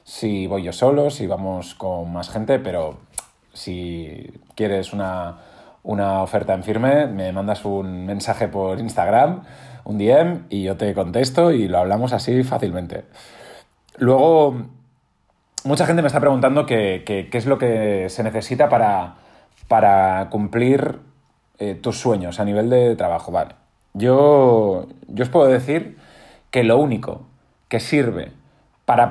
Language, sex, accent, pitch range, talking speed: Spanish, male, Spanish, 100-135 Hz, 140 wpm